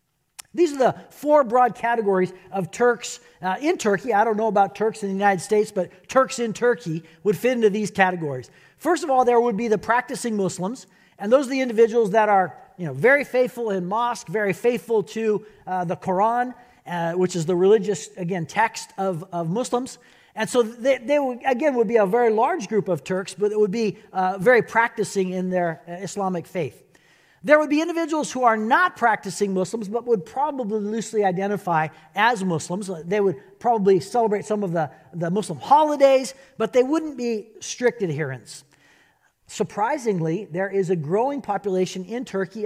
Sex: male